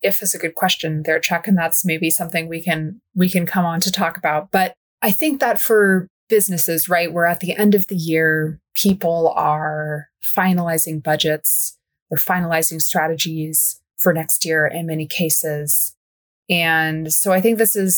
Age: 20-39